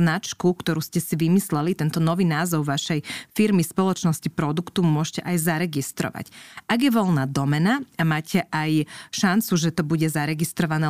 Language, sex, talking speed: Slovak, female, 150 wpm